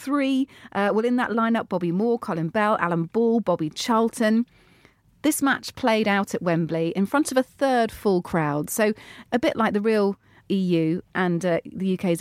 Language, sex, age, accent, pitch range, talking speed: English, female, 40-59, British, 170-225 Hz, 185 wpm